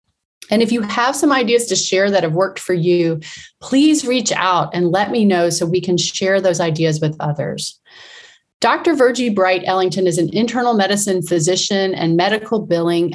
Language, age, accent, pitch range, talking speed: English, 30-49, American, 170-225 Hz, 185 wpm